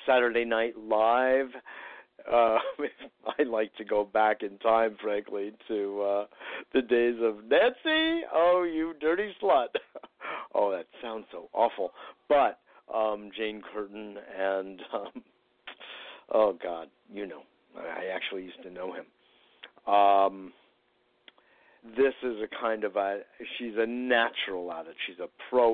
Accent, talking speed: American, 135 wpm